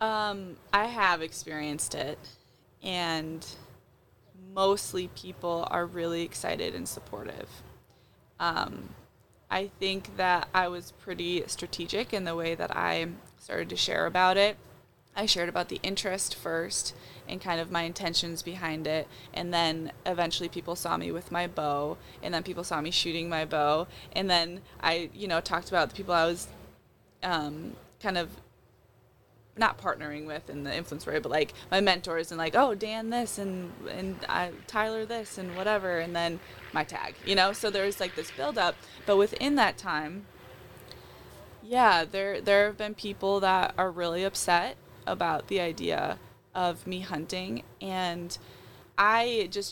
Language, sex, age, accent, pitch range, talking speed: English, female, 20-39, American, 160-190 Hz, 160 wpm